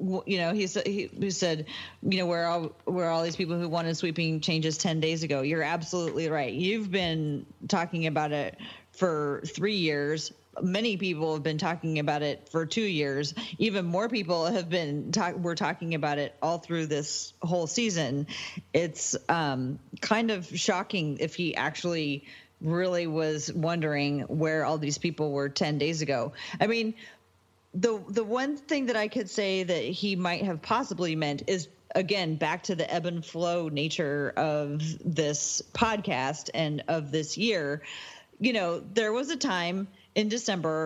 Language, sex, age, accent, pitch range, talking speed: English, female, 30-49, American, 155-195 Hz, 170 wpm